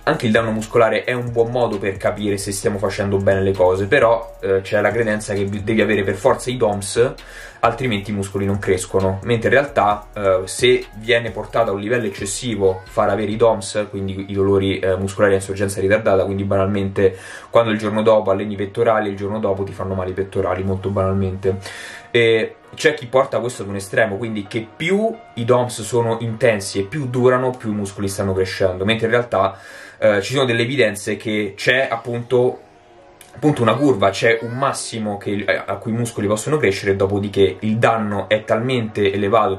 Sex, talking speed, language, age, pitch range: male, 195 wpm, Italian, 20-39, 95-115 Hz